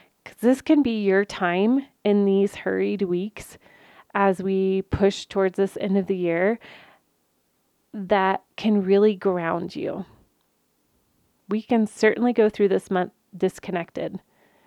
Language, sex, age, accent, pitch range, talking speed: English, female, 30-49, American, 185-215 Hz, 130 wpm